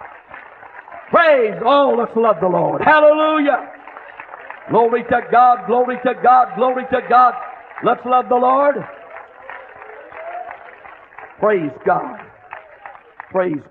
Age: 50-69